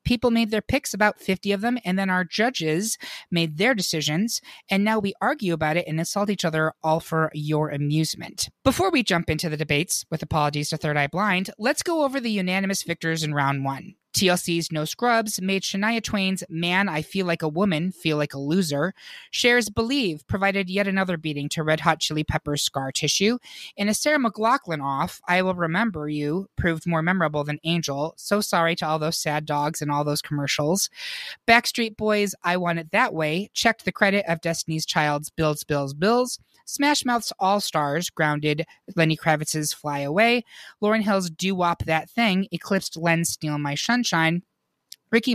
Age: 20-39